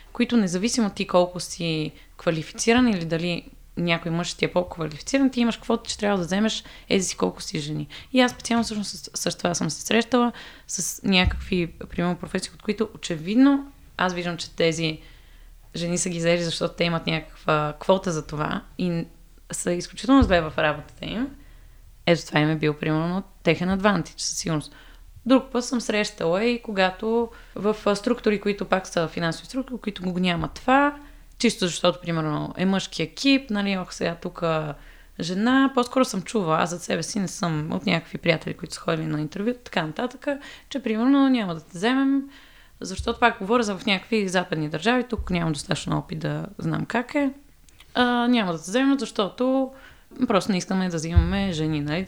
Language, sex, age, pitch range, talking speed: Bulgarian, female, 20-39, 165-235 Hz, 180 wpm